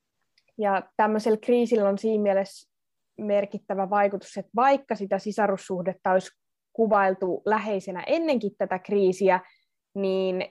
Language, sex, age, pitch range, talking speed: Finnish, female, 20-39, 180-210 Hz, 105 wpm